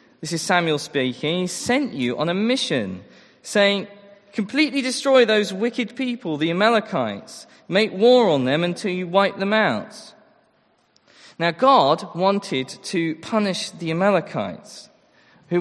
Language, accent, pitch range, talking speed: English, British, 145-210 Hz, 135 wpm